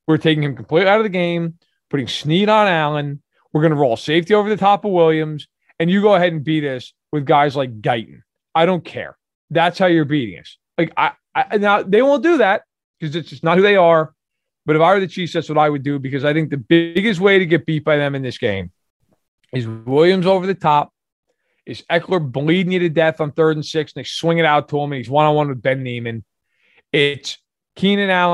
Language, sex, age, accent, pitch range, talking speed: English, male, 30-49, American, 145-190 Hz, 240 wpm